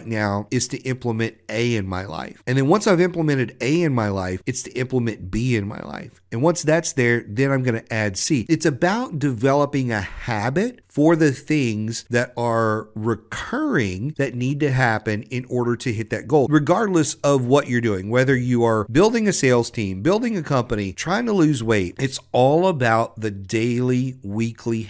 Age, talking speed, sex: 50-69, 195 wpm, male